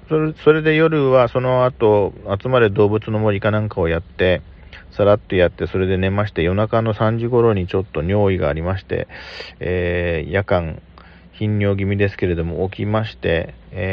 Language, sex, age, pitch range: Japanese, male, 40-59, 95-125 Hz